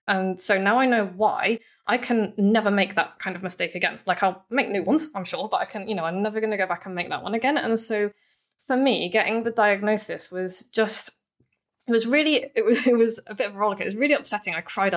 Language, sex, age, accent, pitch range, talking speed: English, female, 20-39, British, 180-225 Hz, 260 wpm